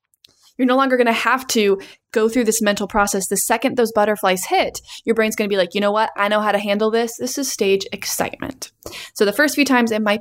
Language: English